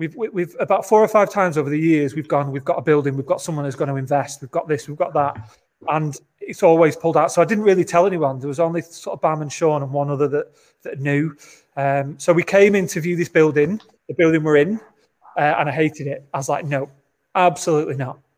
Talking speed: 255 wpm